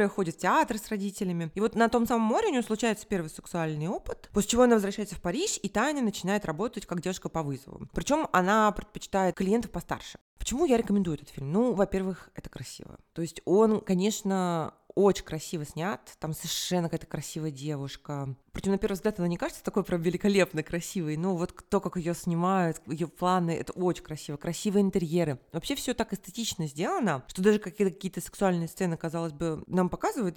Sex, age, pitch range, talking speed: female, 20-39, 170-215 Hz, 190 wpm